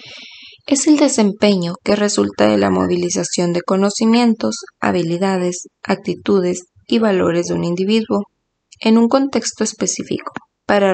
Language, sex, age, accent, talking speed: Spanish, female, 20-39, Mexican, 120 wpm